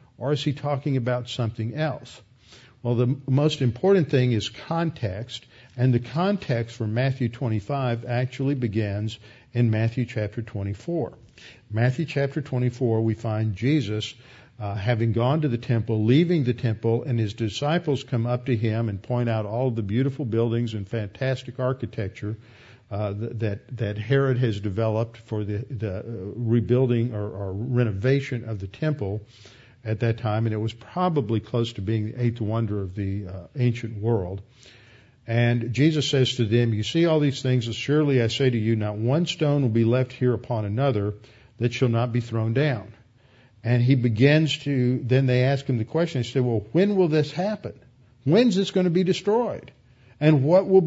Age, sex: 50-69, male